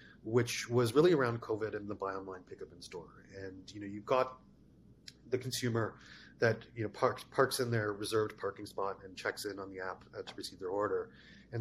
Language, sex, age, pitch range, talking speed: English, male, 30-49, 105-130 Hz, 210 wpm